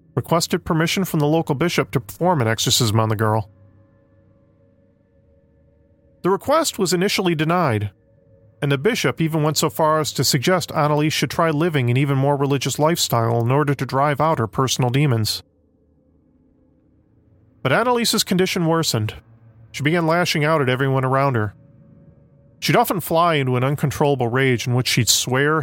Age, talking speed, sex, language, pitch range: 40-59, 160 wpm, male, English, 110-150 Hz